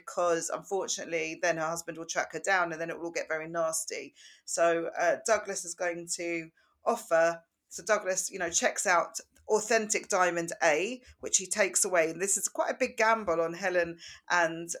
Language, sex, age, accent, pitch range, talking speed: English, female, 40-59, British, 165-195 Hz, 190 wpm